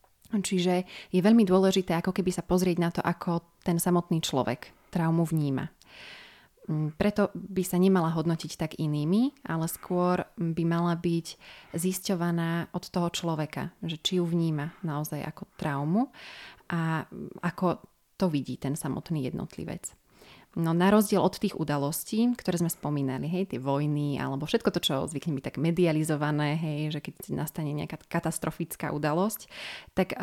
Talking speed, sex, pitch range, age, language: 145 wpm, female, 160-190 Hz, 30-49, Slovak